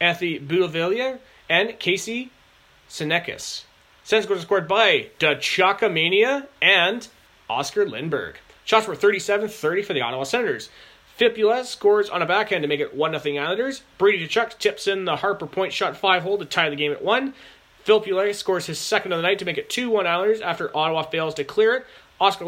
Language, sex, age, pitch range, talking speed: English, male, 30-49, 155-210 Hz, 170 wpm